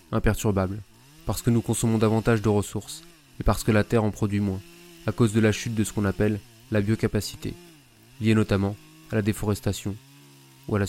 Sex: male